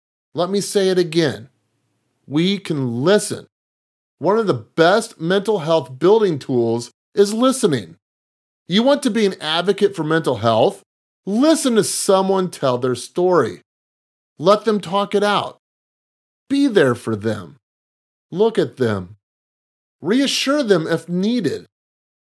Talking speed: 130 wpm